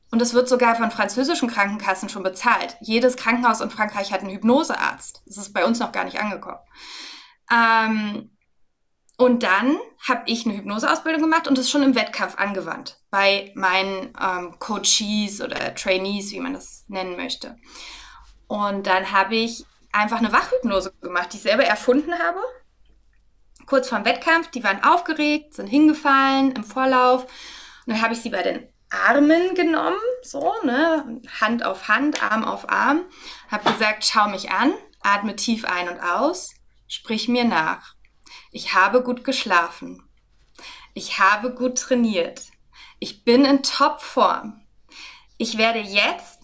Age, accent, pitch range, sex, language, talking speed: 20-39, German, 200-275 Hz, female, German, 150 wpm